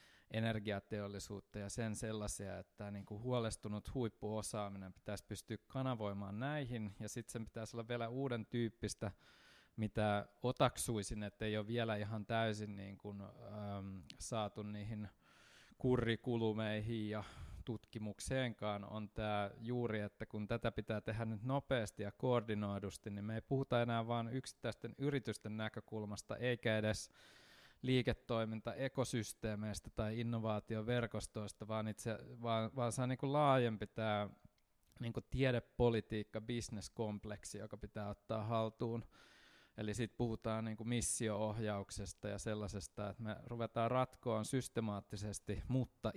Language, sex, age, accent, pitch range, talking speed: Finnish, male, 20-39, native, 105-120 Hz, 120 wpm